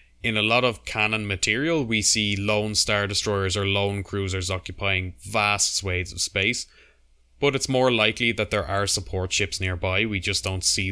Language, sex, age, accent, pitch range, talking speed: English, male, 20-39, Irish, 90-105 Hz, 180 wpm